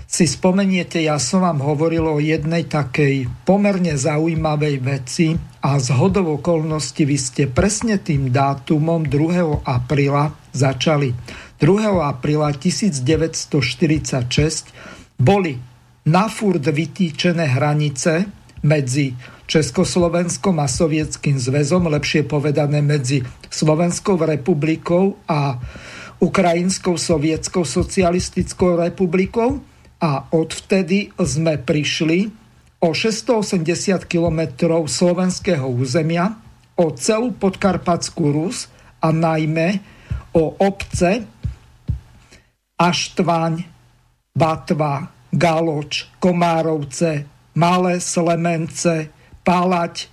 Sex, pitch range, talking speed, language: male, 150-180 Hz, 85 wpm, Slovak